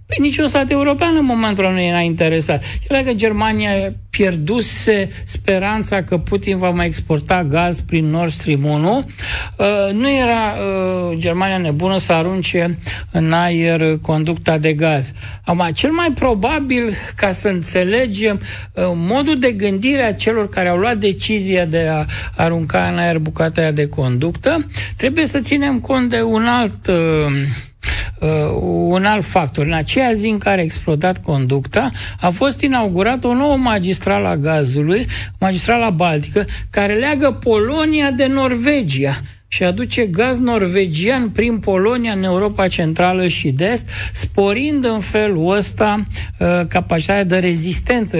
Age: 60-79